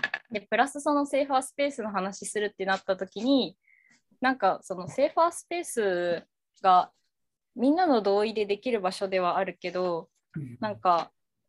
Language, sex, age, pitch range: Japanese, female, 20-39, 175-220 Hz